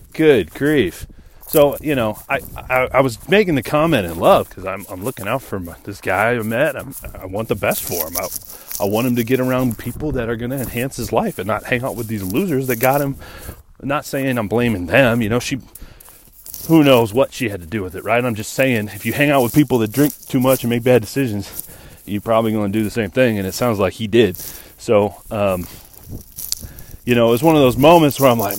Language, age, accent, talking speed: English, 30-49, American, 250 wpm